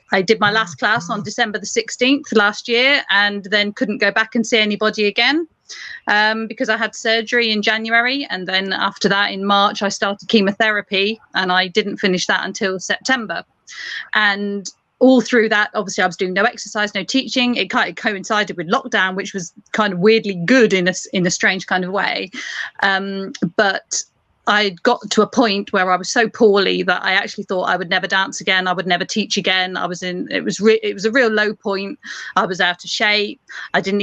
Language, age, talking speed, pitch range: English, 30-49, 210 wpm, 190-225 Hz